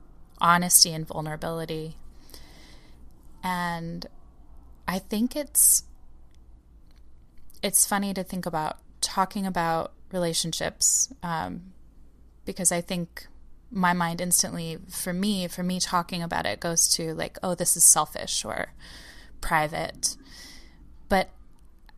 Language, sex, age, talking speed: English, female, 20-39, 105 wpm